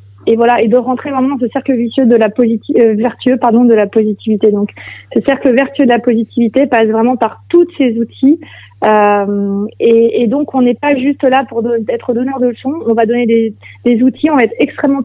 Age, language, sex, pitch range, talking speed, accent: 20-39, French, female, 220-260 Hz, 225 wpm, French